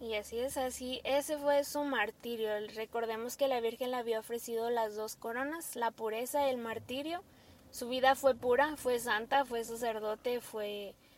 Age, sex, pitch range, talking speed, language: 20-39, female, 225-270 Hz, 165 wpm, Spanish